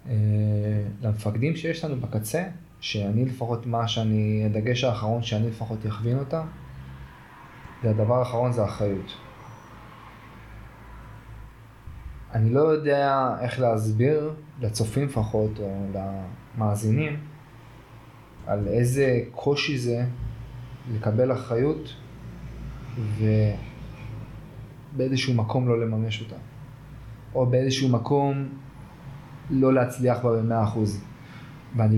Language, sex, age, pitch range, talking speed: Hebrew, male, 20-39, 110-125 Hz, 90 wpm